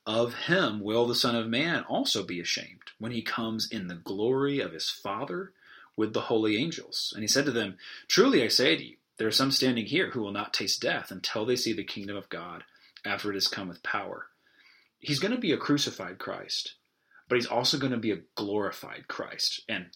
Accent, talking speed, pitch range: American, 220 wpm, 95-120 Hz